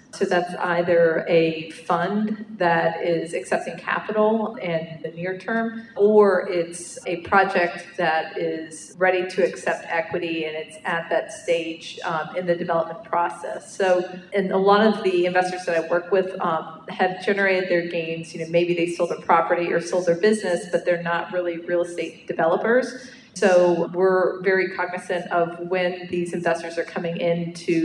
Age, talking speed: 40-59, 170 wpm